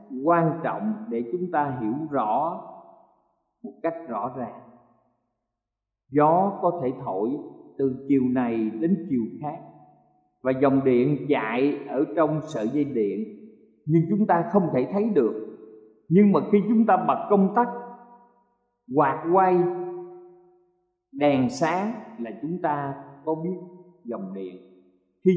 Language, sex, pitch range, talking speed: Vietnamese, male, 120-195 Hz, 135 wpm